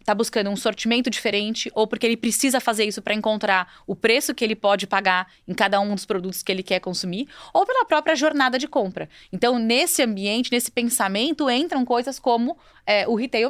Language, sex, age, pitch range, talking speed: Portuguese, female, 20-39, 200-255 Hz, 195 wpm